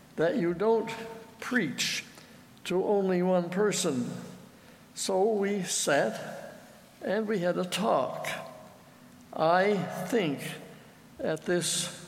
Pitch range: 160-195 Hz